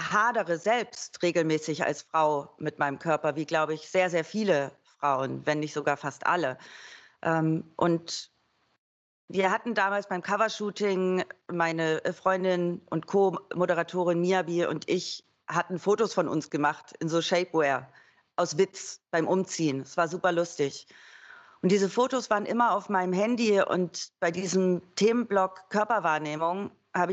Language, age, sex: German, 40-59, female